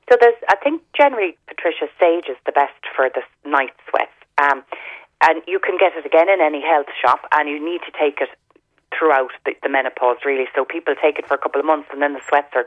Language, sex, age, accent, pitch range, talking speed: English, female, 30-49, Irish, 130-165 Hz, 235 wpm